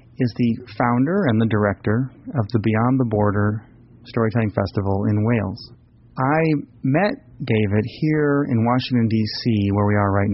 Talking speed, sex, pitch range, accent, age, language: 150 wpm, male, 105-125 Hz, American, 30-49, English